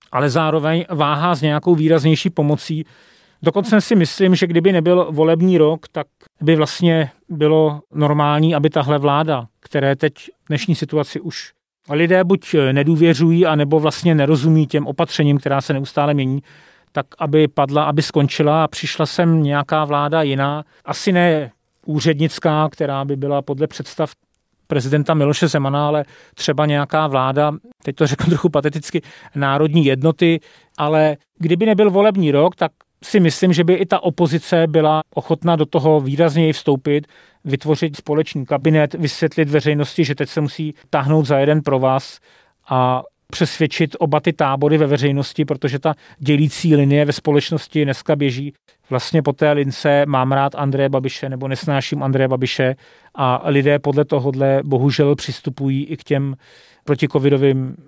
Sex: male